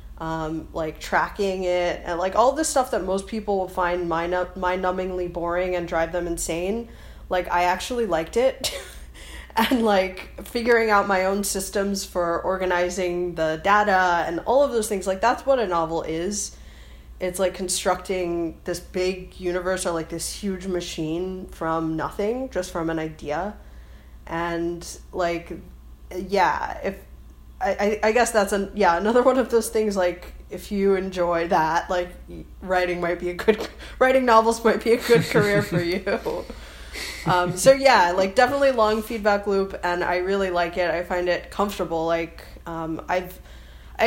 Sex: female